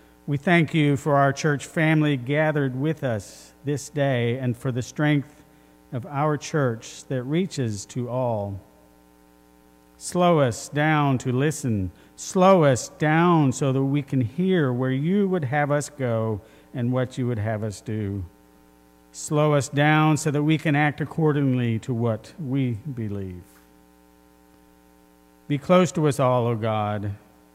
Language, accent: English, American